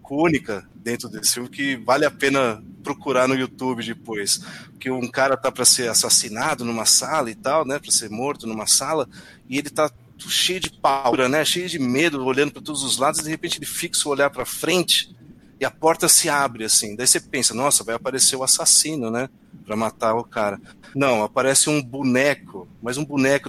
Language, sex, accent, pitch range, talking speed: Portuguese, male, Brazilian, 130-180 Hz, 200 wpm